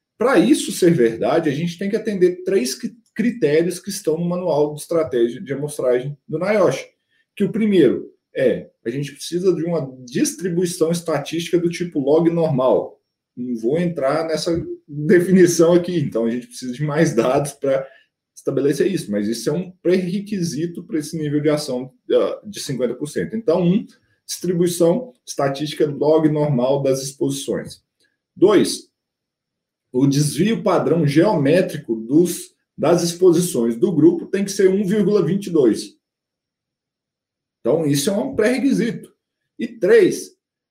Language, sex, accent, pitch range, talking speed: Portuguese, male, Brazilian, 145-195 Hz, 135 wpm